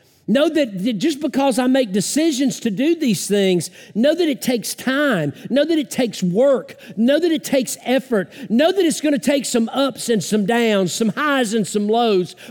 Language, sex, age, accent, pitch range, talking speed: English, male, 50-69, American, 210-290 Hz, 200 wpm